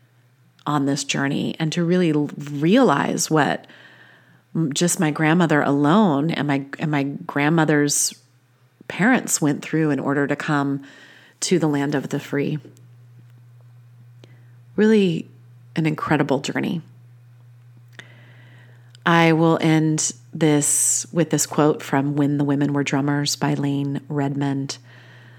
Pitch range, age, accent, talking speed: 125-170 Hz, 30-49, American, 120 wpm